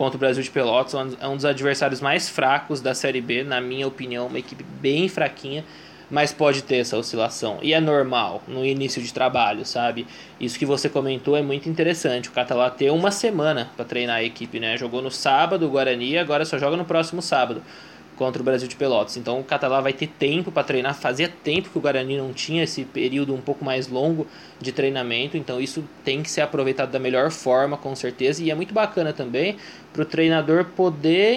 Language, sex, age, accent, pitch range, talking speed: Portuguese, male, 20-39, Brazilian, 135-165 Hz, 210 wpm